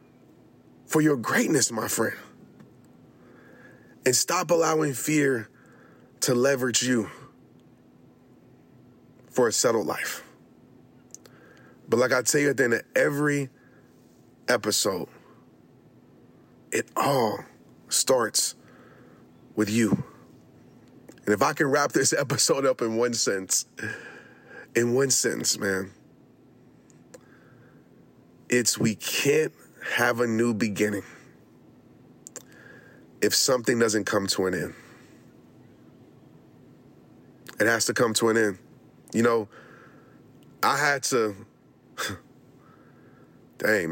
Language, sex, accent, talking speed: English, male, American, 95 wpm